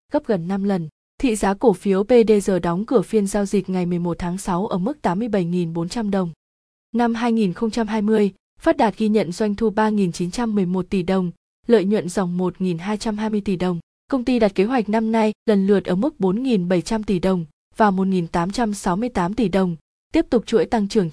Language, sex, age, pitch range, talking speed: Vietnamese, female, 20-39, 190-230 Hz, 180 wpm